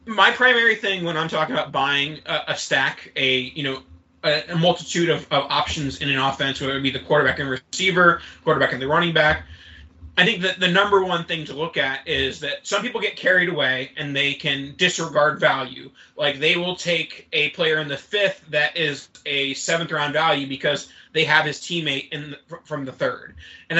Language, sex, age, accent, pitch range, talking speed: English, male, 20-39, American, 140-170 Hz, 205 wpm